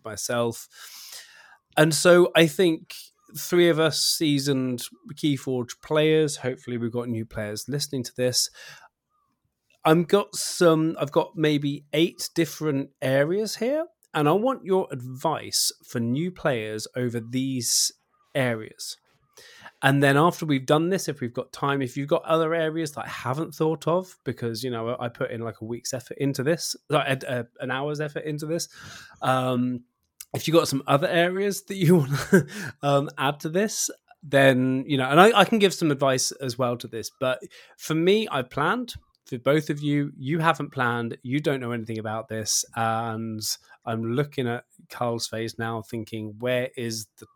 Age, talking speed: 20-39, 170 wpm